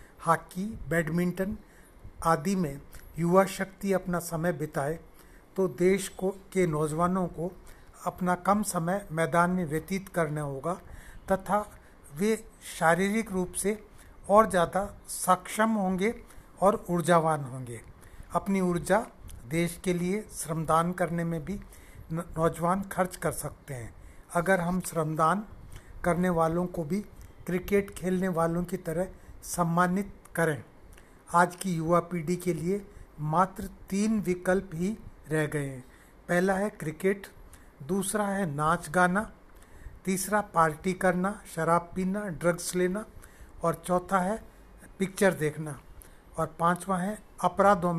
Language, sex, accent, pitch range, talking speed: Hindi, male, native, 165-195 Hz, 125 wpm